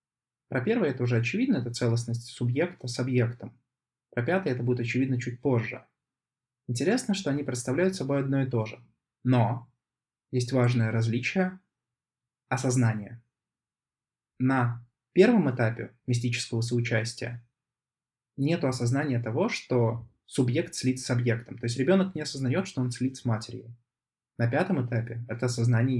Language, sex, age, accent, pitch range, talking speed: Russian, male, 20-39, native, 115-130 Hz, 135 wpm